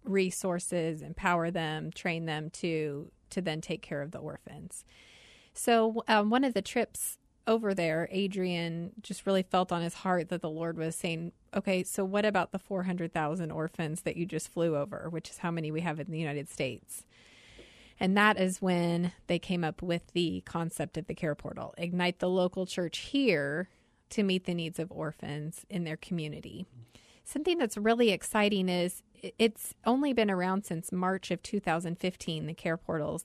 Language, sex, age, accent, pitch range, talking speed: English, female, 30-49, American, 165-200 Hz, 180 wpm